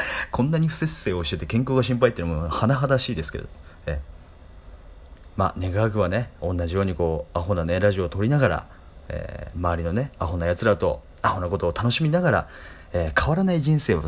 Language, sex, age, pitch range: Japanese, male, 30-49, 80-115 Hz